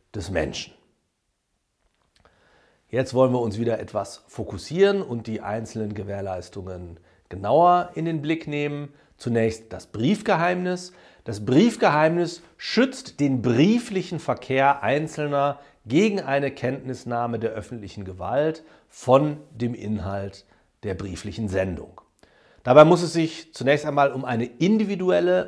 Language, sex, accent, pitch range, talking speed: German, male, German, 110-155 Hz, 115 wpm